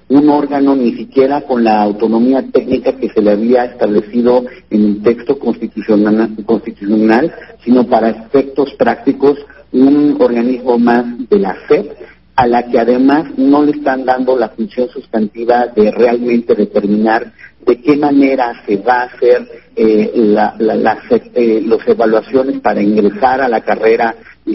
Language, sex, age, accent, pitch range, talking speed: Spanish, male, 50-69, Mexican, 110-140 Hz, 150 wpm